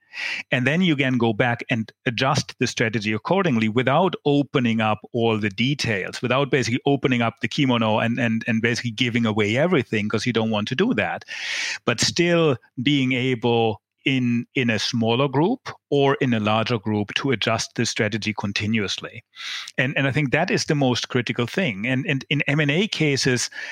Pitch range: 115-145 Hz